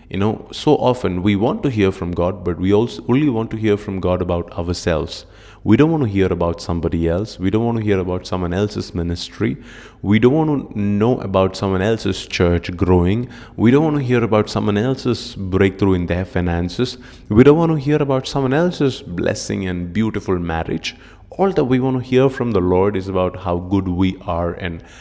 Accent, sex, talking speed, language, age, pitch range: Indian, male, 210 wpm, English, 30-49, 90-110 Hz